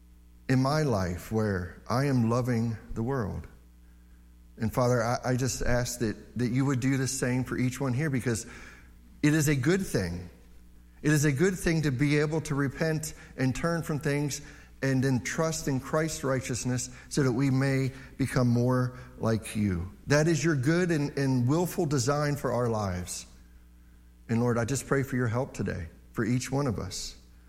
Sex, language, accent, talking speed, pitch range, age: male, English, American, 185 wpm, 105-150 Hz, 50-69